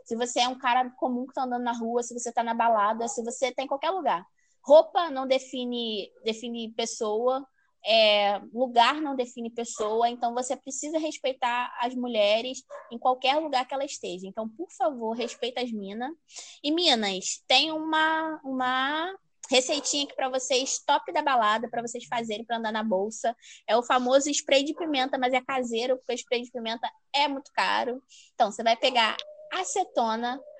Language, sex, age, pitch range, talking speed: Portuguese, female, 20-39, 235-280 Hz, 175 wpm